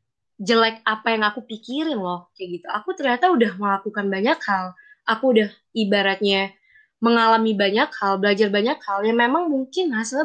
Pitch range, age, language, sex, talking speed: 200-255 Hz, 20-39, Indonesian, female, 160 wpm